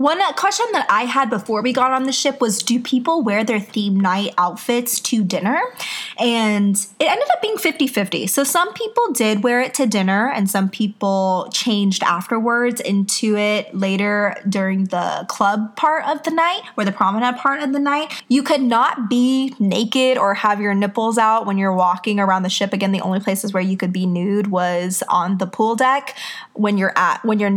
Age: 20-39